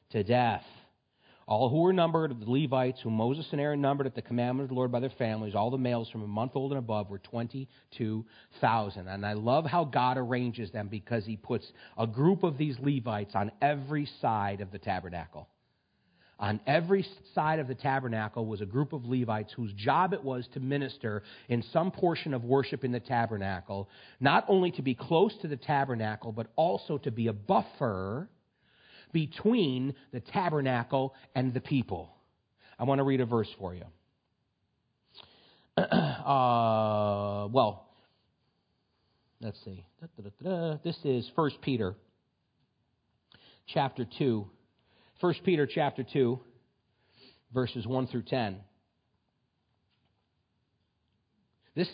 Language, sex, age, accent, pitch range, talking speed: English, male, 40-59, American, 110-140 Hz, 145 wpm